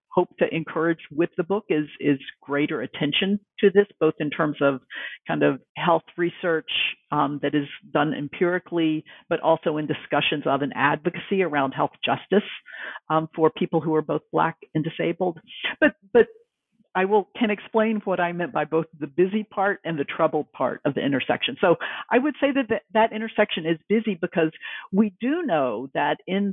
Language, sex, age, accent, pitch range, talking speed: English, female, 50-69, American, 155-200 Hz, 185 wpm